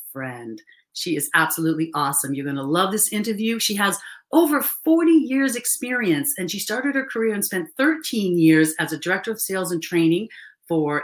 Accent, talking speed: American, 185 wpm